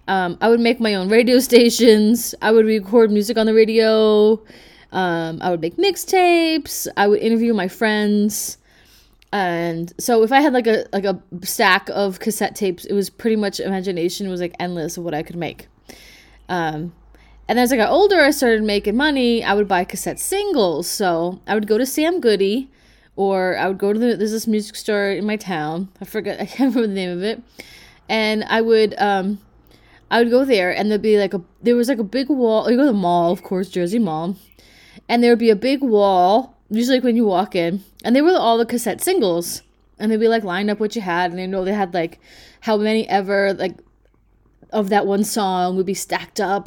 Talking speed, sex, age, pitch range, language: 220 wpm, female, 20-39, 185-230 Hz, English